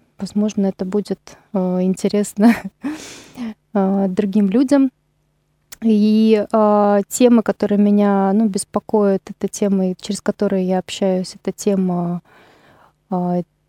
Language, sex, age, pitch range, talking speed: Russian, female, 20-39, 190-215 Hz, 105 wpm